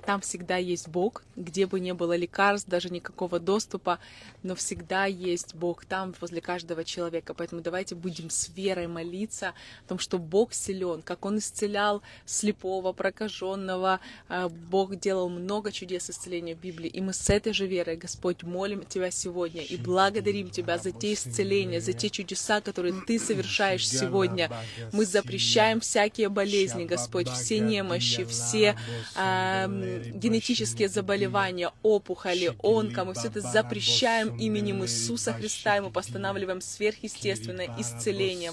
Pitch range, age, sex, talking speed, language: 170-205 Hz, 20-39, female, 140 wpm, Russian